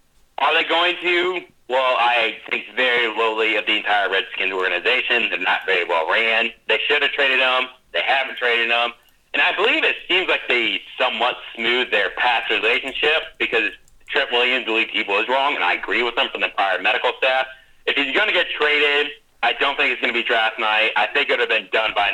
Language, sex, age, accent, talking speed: English, male, 40-59, American, 215 wpm